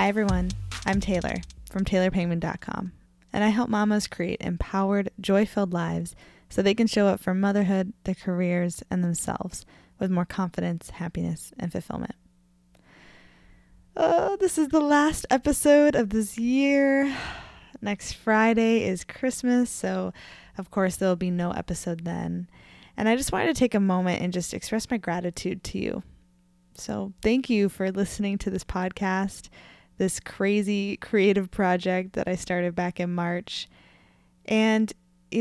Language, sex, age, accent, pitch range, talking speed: English, female, 10-29, American, 175-210 Hz, 145 wpm